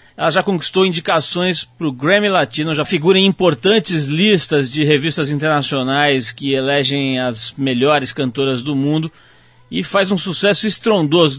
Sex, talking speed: male, 150 wpm